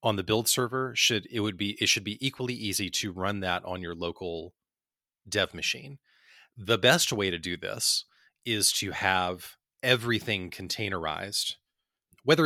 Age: 30-49